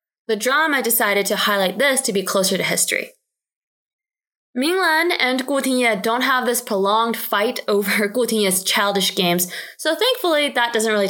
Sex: female